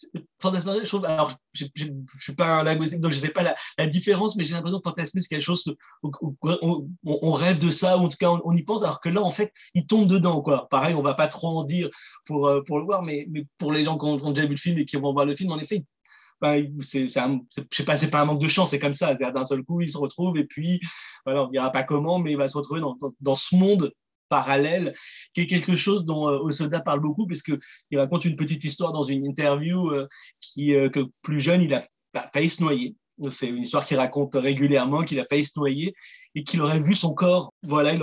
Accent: French